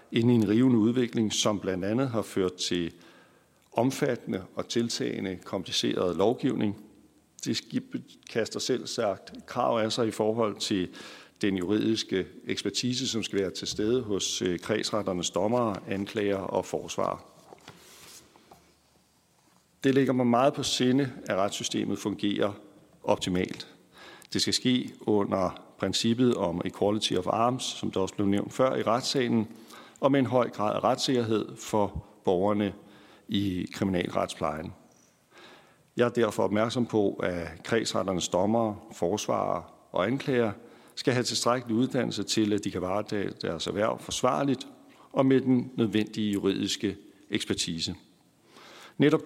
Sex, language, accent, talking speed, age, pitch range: male, Danish, native, 130 wpm, 60-79, 100-120 Hz